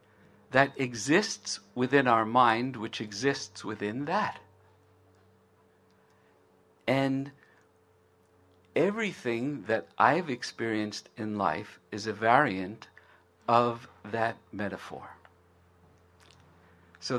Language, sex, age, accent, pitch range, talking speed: English, male, 60-79, American, 95-130 Hz, 80 wpm